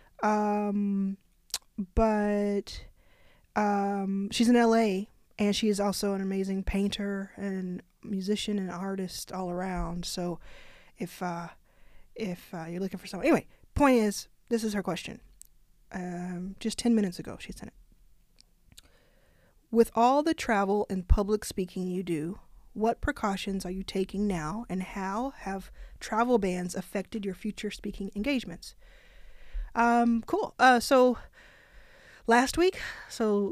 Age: 20-39